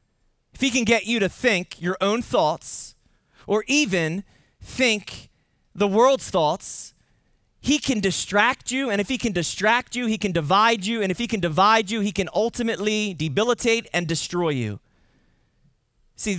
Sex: male